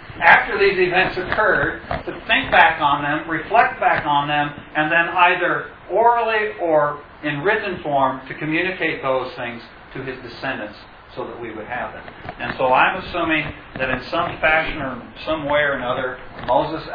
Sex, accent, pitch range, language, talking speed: male, American, 120-155 Hz, English, 170 wpm